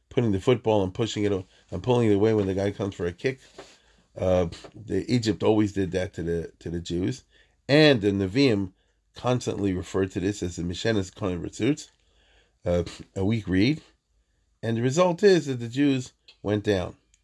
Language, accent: English, American